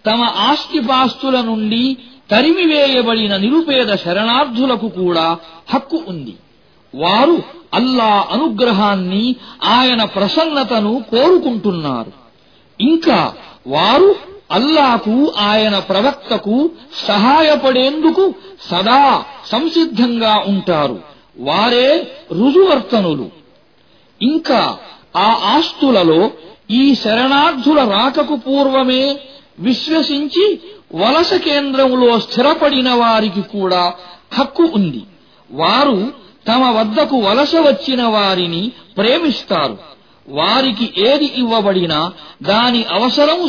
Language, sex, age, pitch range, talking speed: Arabic, male, 50-69, 215-285 Hz, 70 wpm